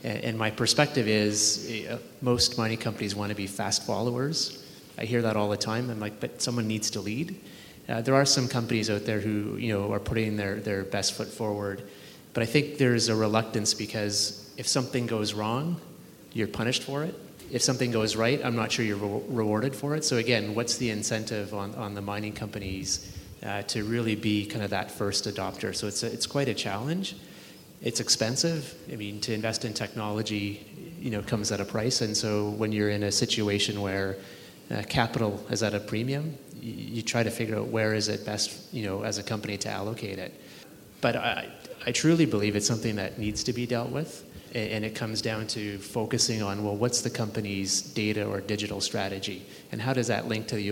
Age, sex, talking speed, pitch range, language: 30-49, male, 210 wpm, 105-120 Hz, English